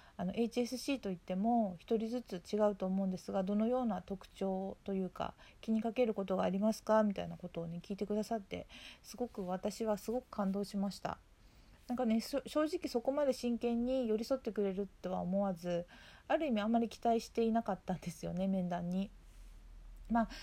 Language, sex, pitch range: Japanese, female, 185-230 Hz